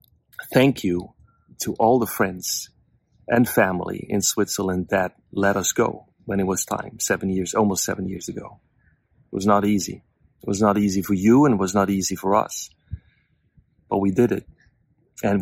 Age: 30-49